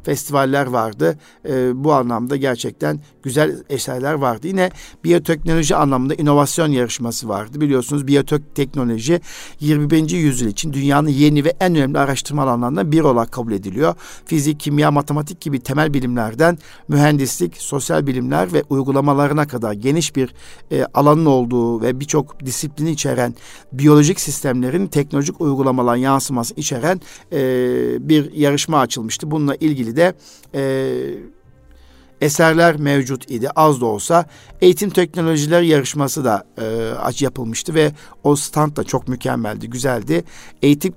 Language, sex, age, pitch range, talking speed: Turkish, male, 50-69, 125-150 Hz, 120 wpm